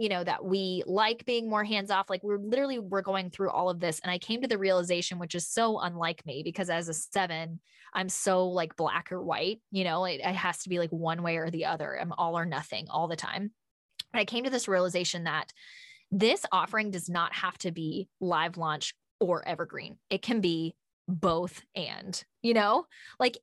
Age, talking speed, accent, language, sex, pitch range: 10-29, 215 wpm, American, English, female, 170-220 Hz